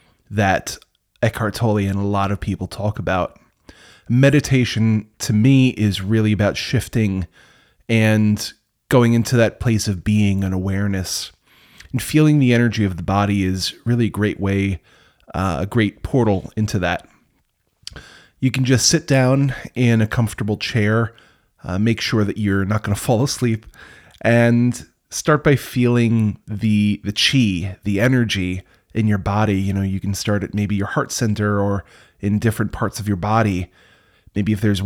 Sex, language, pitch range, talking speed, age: male, English, 100-120 Hz, 165 wpm, 30-49